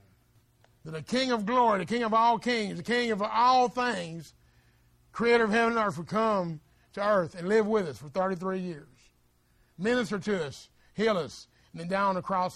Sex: male